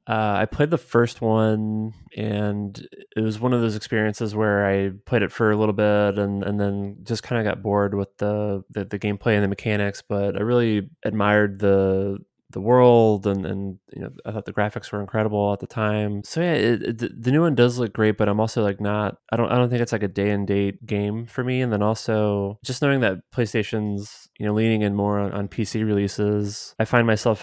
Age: 20-39